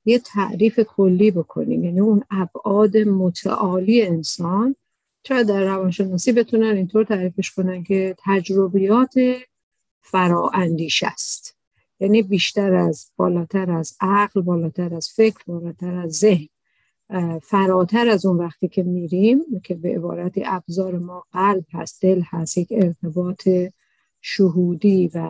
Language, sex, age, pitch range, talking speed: Persian, female, 50-69, 180-205 Hz, 120 wpm